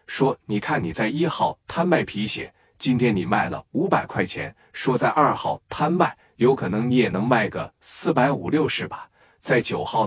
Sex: male